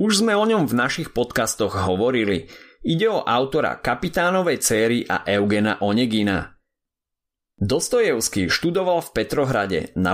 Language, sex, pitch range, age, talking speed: Slovak, male, 100-140 Hz, 30-49, 125 wpm